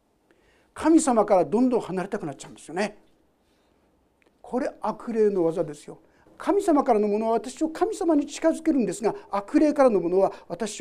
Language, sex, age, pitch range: Japanese, male, 50-69, 190-275 Hz